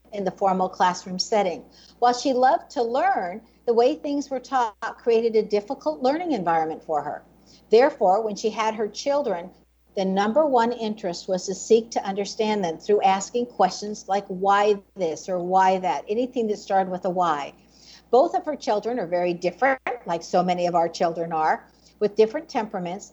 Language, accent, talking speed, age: English, American, 180 wpm, 60-79